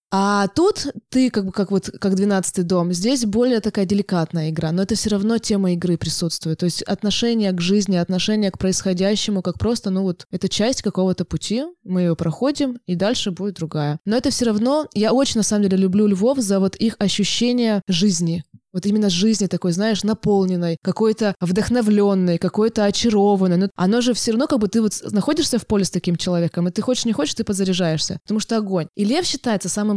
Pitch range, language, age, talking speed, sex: 180-220 Hz, Russian, 20-39, 200 wpm, female